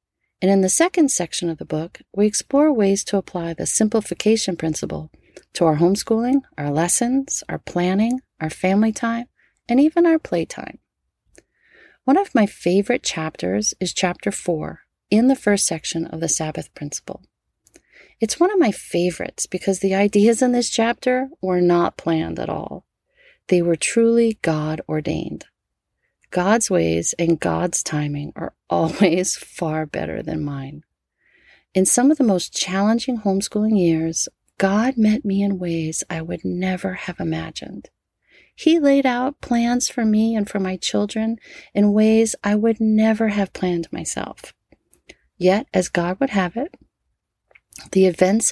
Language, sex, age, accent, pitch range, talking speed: English, female, 40-59, American, 170-225 Hz, 150 wpm